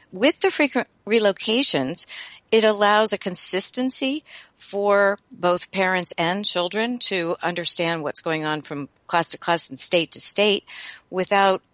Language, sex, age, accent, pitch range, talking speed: English, female, 50-69, American, 160-200 Hz, 140 wpm